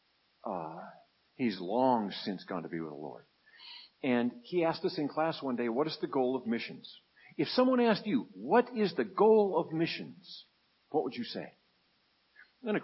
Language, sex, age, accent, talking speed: English, male, 50-69, American, 185 wpm